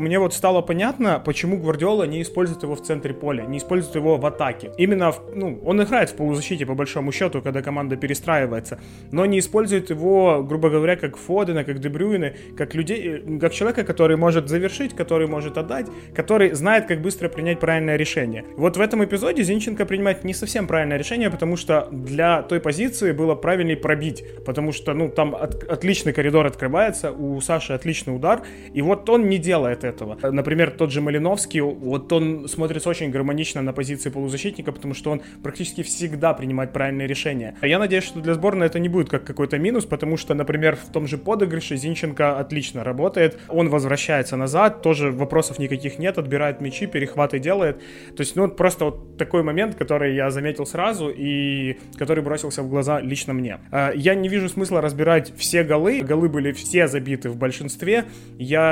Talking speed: 180 wpm